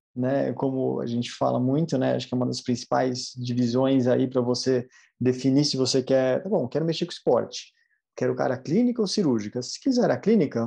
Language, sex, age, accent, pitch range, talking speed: Portuguese, male, 20-39, Brazilian, 130-160 Hz, 200 wpm